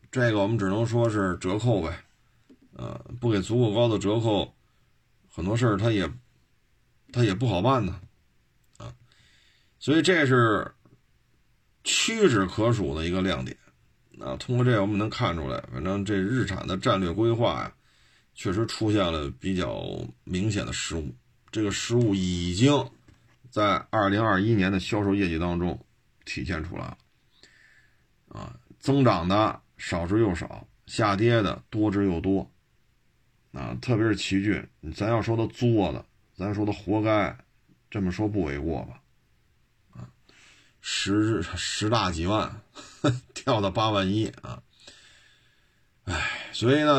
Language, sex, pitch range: Chinese, male, 95-120 Hz